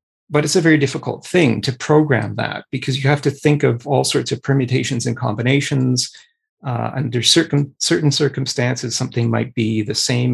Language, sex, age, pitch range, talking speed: English, male, 40-59, 115-135 Hz, 180 wpm